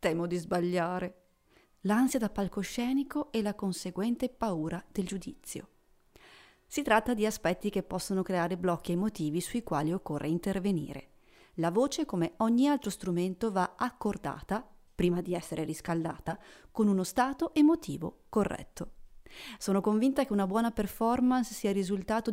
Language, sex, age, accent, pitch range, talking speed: Italian, female, 30-49, native, 175-230 Hz, 135 wpm